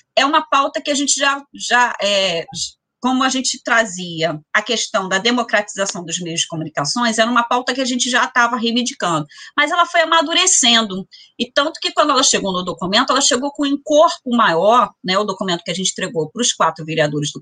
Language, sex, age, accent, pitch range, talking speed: Portuguese, female, 30-49, Brazilian, 210-280 Hz, 205 wpm